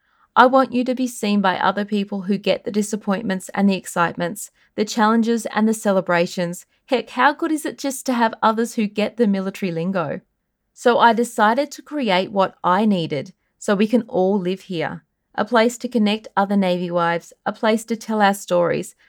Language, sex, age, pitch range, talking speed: English, female, 30-49, 190-235 Hz, 195 wpm